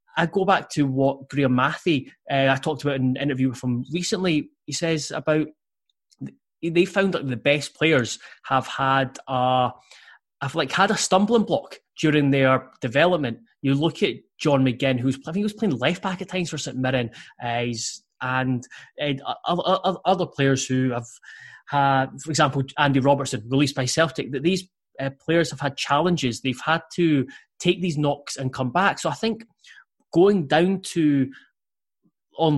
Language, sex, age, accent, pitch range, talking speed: English, male, 20-39, British, 130-165 Hz, 170 wpm